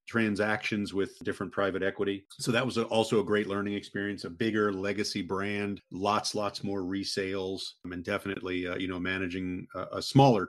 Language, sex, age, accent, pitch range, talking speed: English, male, 40-59, American, 95-115 Hz, 175 wpm